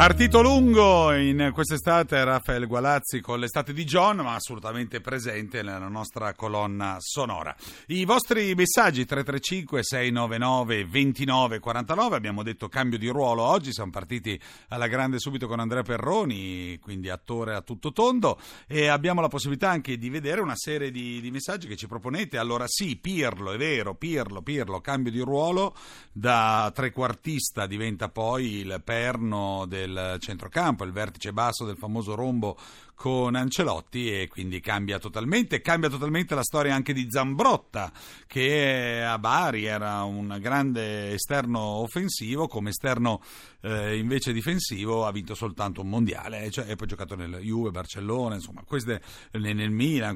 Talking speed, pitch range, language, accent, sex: 145 wpm, 105-140 Hz, Italian, native, male